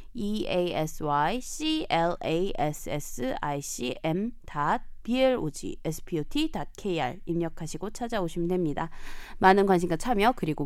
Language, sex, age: Korean, female, 20-39